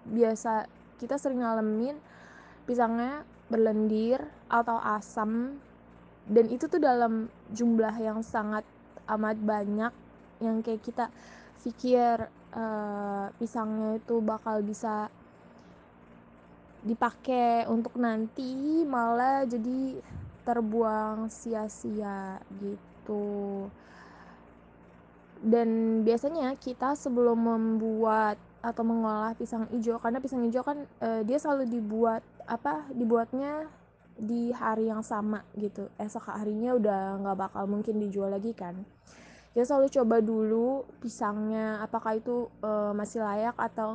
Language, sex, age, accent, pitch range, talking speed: Indonesian, female, 20-39, native, 215-235 Hz, 105 wpm